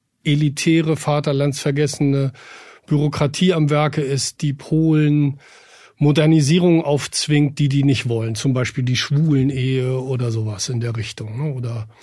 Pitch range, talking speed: 130-155 Hz, 125 wpm